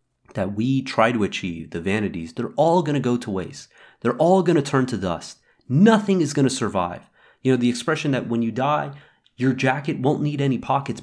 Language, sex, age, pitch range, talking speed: English, male, 30-49, 110-160 Hz, 220 wpm